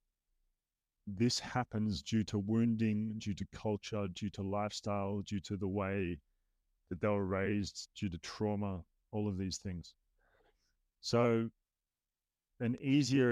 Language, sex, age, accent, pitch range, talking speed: English, male, 30-49, Australian, 100-115 Hz, 130 wpm